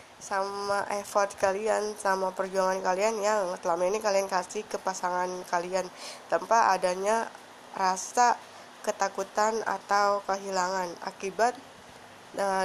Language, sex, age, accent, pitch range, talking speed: Indonesian, female, 20-39, native, 185-210 Hz, 105 wpm